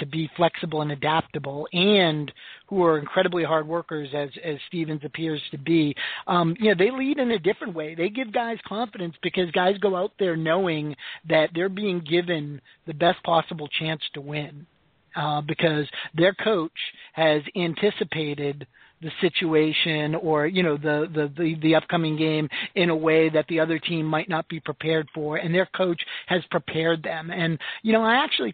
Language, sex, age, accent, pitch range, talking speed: English, male, 50-69, American, 155-185 Hz, 180 wpm